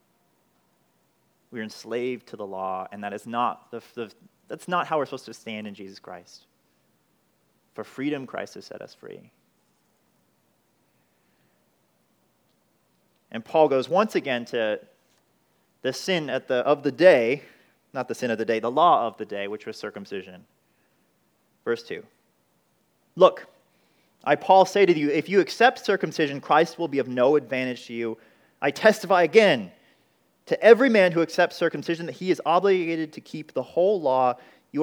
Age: 30-49